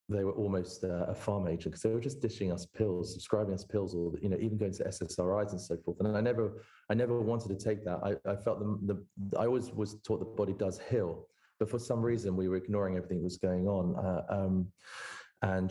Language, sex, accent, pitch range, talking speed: English, male, British, 95-110 Hz, 245 wpm